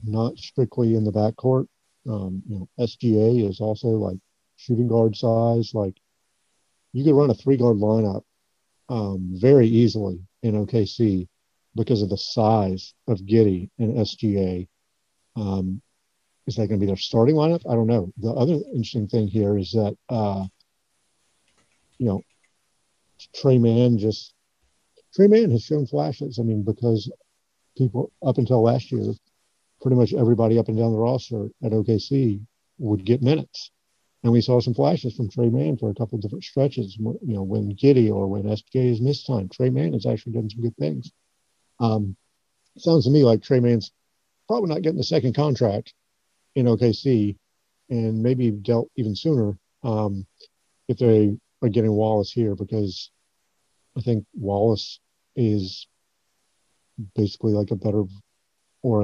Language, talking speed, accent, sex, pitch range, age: English, 160 wpm, American, male, 105-125 Hz, 50-69